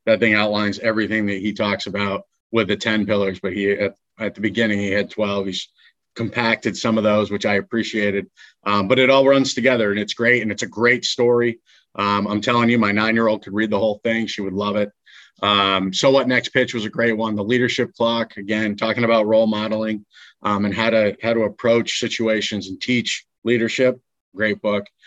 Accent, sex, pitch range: American, male, 105-115 Hz